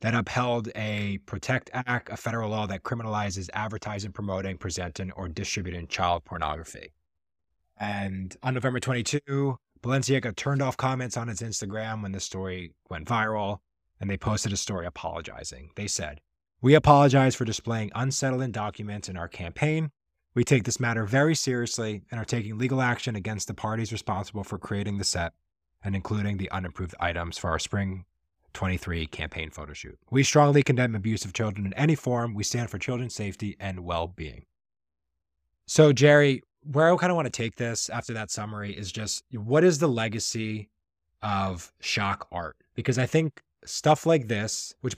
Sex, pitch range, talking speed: male, 95-125 Hz, 170 wpm